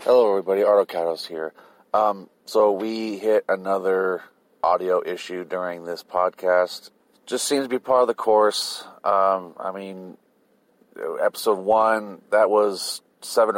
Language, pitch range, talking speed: English, 95-120 Hz, 135 wpm